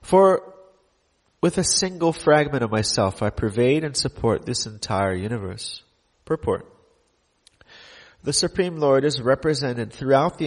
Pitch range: 110-150 Hz